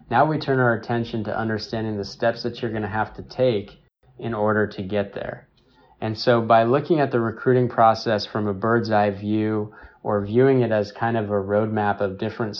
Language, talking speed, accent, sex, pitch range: English, 210 wpm, American, male, 105-120 Hz